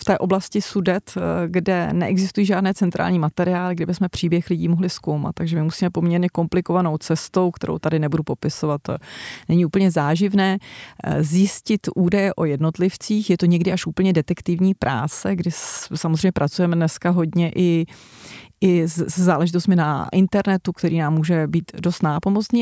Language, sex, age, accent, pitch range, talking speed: Czech, female, 30-49, native, 160-185 Hz, 150 wpm